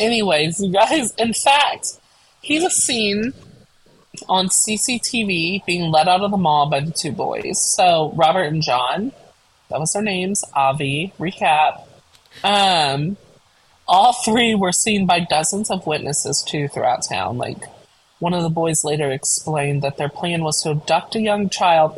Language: English